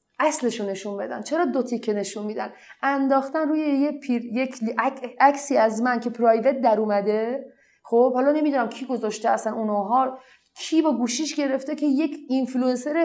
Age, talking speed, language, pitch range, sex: 30-49, 155 wpm, Persian, 235-305 Hz, female